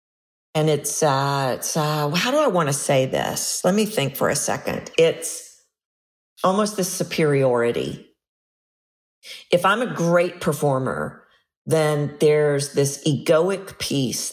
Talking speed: 135 wpm